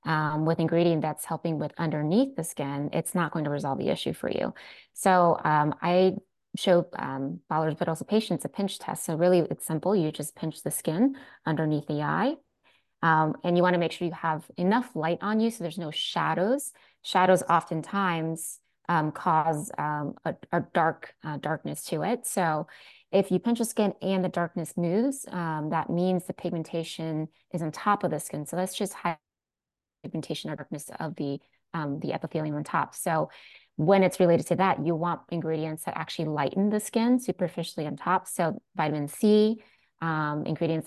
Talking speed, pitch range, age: 190 wpm, 155-185 Hz, 20-39